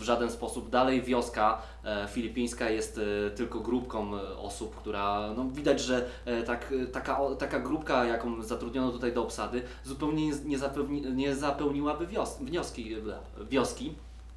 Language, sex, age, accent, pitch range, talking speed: Polish, male, 20-39, native, 105-135 Hz, 115 wpm